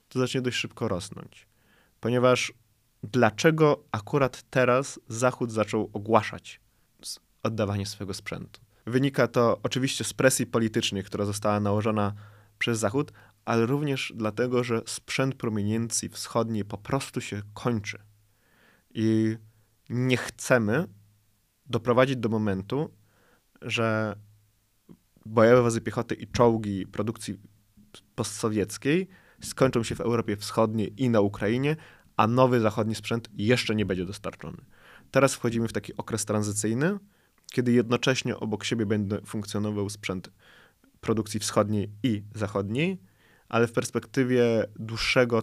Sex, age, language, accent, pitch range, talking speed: male, 20-39, Polish, native, 105-125 Hz, 115 wpm